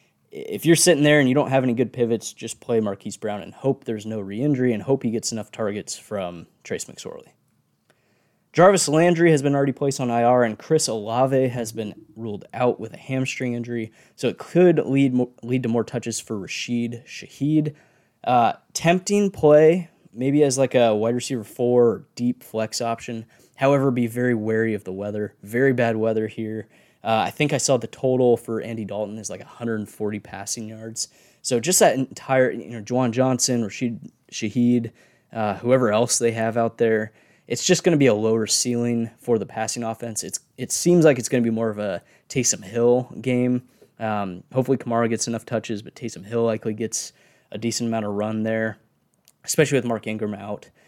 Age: 10-29